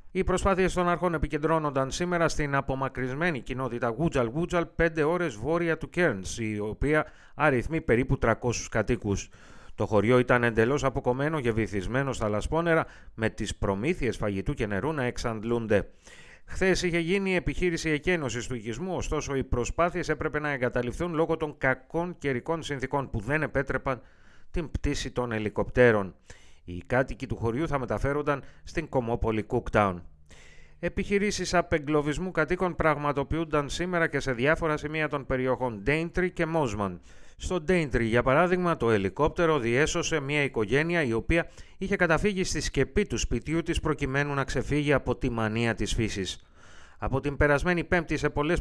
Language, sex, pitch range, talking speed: Greek, male, 120-165 Hz, 150 wpm